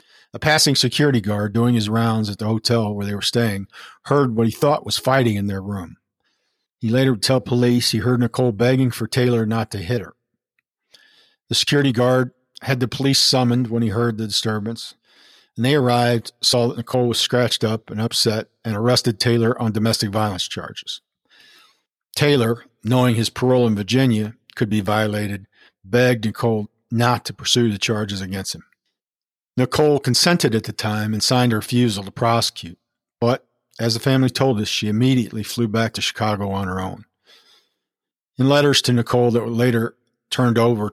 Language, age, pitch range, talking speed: English, 50-69, 105-125 Hz, 175 wpm